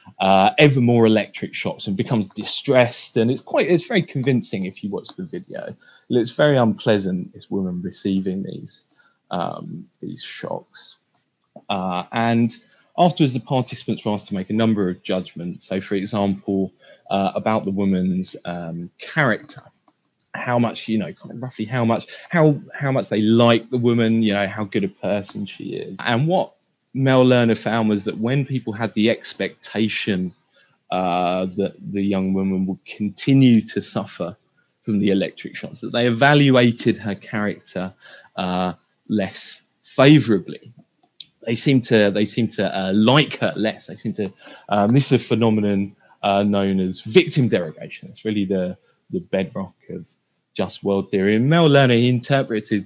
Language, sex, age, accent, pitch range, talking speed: English, male, 20-39, British, 95-125 Hz, 165 wpm